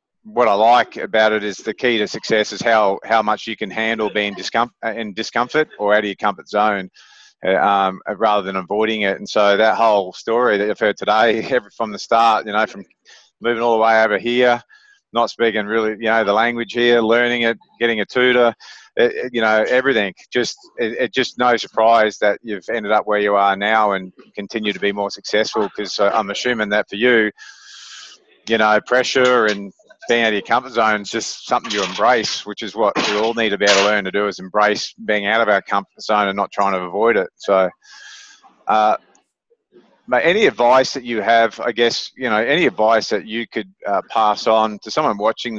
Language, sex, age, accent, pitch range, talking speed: English, male, 30-49, Australian, 105-120 Hz, 215 wpm